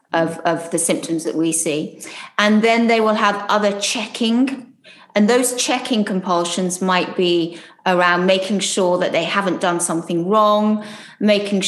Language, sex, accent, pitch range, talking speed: English, female, British, 180-215 Hz, 155 wpm